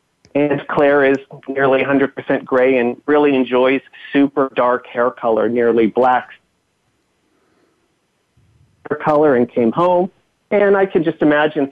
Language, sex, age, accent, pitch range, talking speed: English, male, 40-59, American, 125-160 Hz, 130 wpm